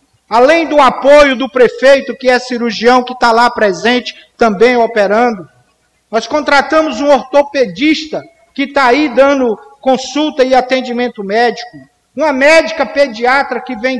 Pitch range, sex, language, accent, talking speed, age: 230-285 Hz, male, Portuguese, Brazilian, 135 wpm, 50-69